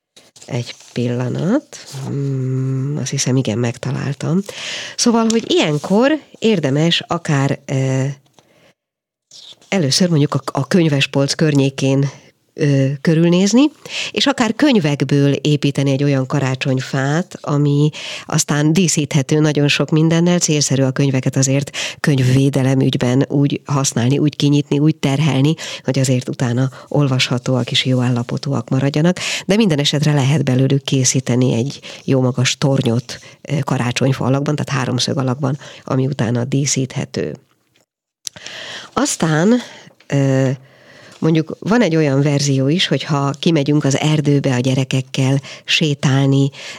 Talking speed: 105 wpm